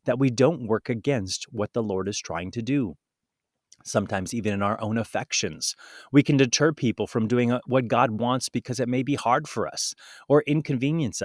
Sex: male